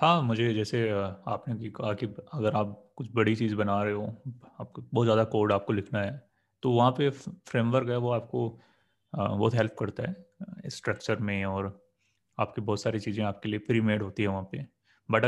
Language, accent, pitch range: Hindi, native, 105-125 Hz